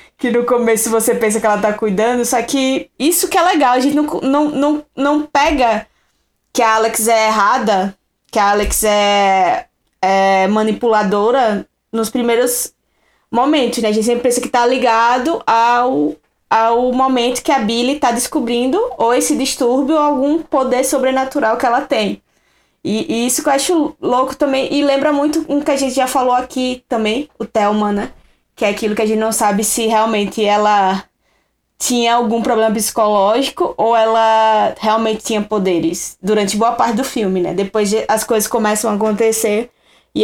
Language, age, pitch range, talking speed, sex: Portuguese, 10-29, 220-275 Hz, 175 wpm, female